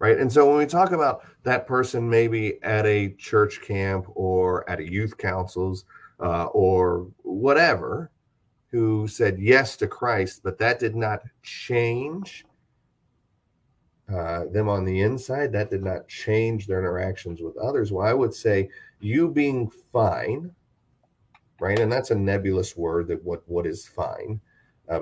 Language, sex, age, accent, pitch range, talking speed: English, male, 40-59, American, 95-120 Hz, 155 wpm